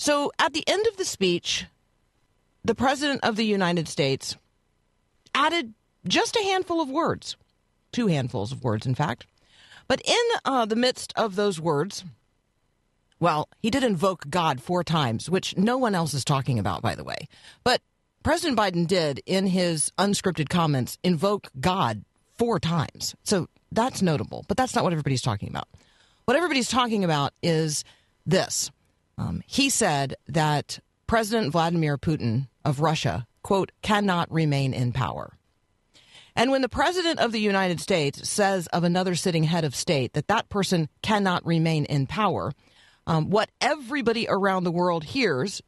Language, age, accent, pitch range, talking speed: English, 40-59, American, 145-220 Hz, 160 wpm